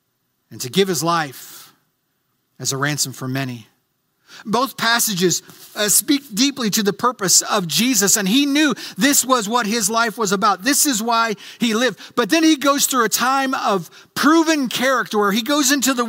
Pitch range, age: 180-245 Hz, 50-69